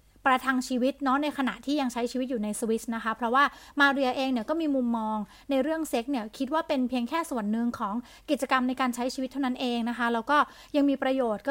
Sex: female